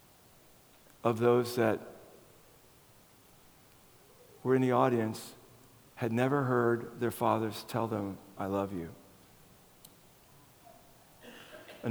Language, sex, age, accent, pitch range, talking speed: English, male, 50-69, American, 110-125 Hz, 90 wpm